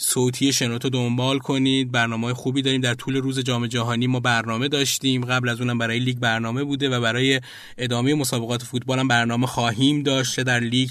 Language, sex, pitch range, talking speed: Persian, male, 125-145 Hz, 180 wpm